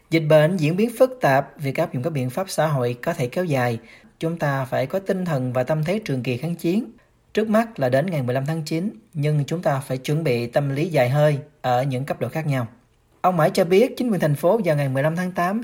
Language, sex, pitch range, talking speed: Vietnamese, male, 130-175 Hz, 260 wpm